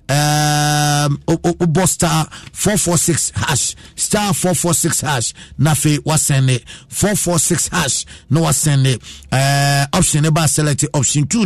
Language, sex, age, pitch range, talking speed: English, male, 50-69, 125-165 Hz, 140 wpm